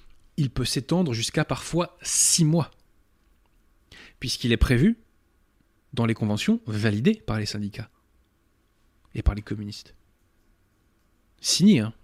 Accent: French